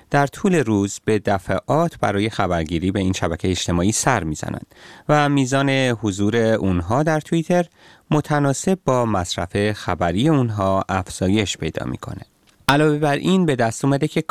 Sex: male